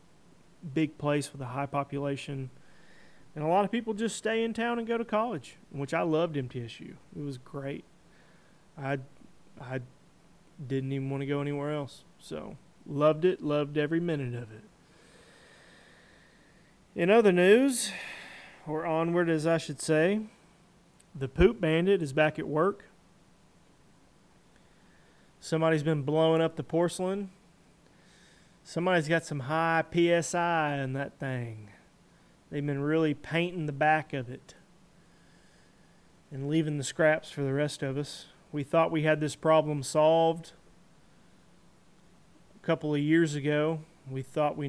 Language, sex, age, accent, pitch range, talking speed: English, male, 30-49, American, 145-170 Hz, 140 wpm